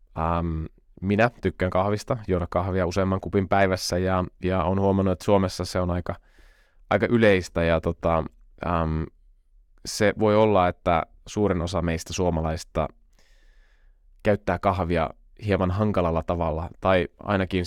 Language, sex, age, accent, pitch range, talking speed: Finnish, male, 20-39, native, 80-100 Hz, 130 wpm